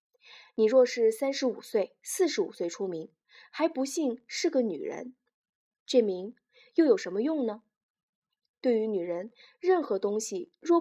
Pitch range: 210-320 Hz